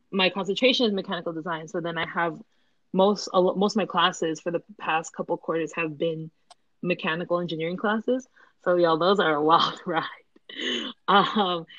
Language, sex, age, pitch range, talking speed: English, female, 20-39, 165-195 Hz, 170 wpm